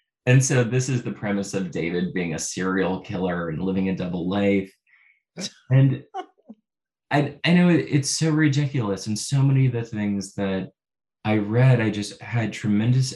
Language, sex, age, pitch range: English, male, 20-39, 95-120 Hz